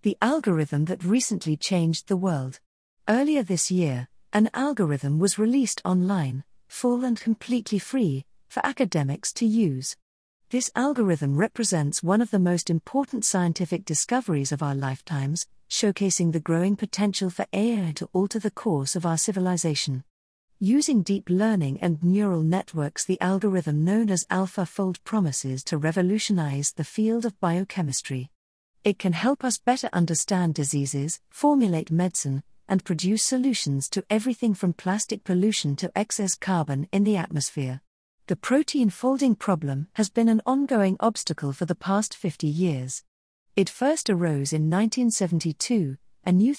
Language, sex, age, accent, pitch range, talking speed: English, female, 50-69, British, 155-215 Hz, 145 wpm